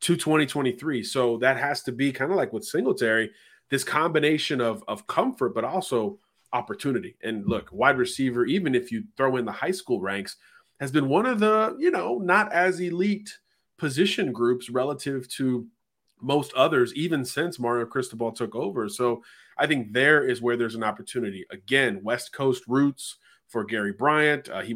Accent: American